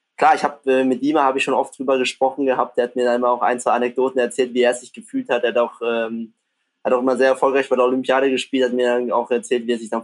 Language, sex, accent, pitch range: German, male, German, 120-135 Hz